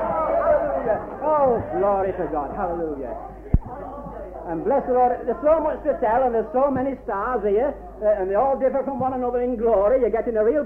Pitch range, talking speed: 195-270 Hz, 190 wpm